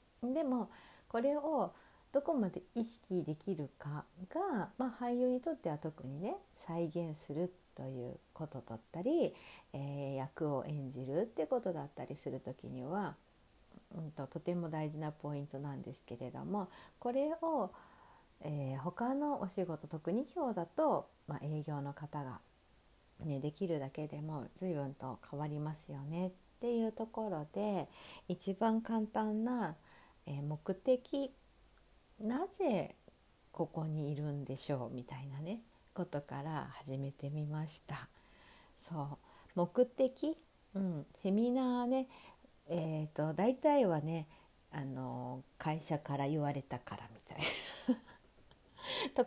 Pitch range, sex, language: 145-230 Hz, female, Japanese